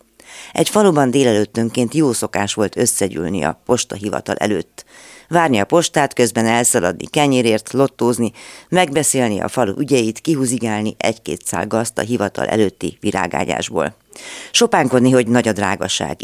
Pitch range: 105-130 Hz